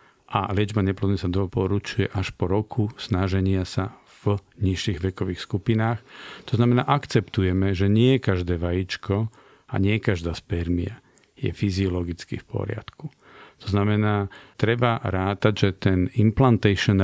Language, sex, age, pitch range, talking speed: Slovak, male, 50-69, 95-115 Hz, 125 wpm